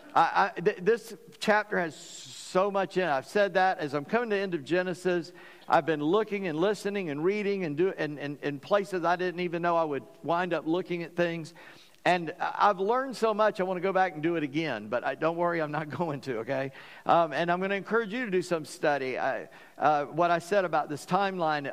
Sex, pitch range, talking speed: male, 155-195 Hz, 235 wpm